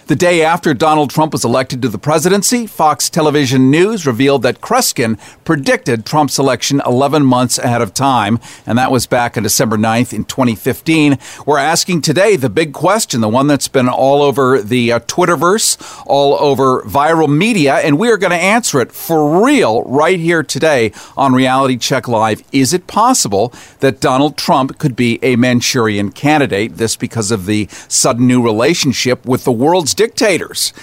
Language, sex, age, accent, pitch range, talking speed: English, male, 50-69, American, 120-155 Hz, 175 wpm